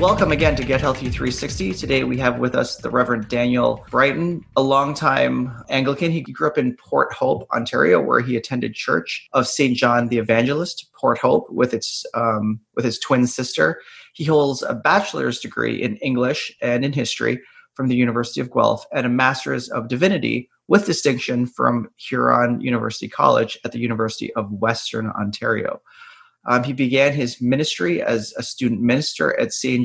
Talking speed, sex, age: 175 wpm, male, 30-49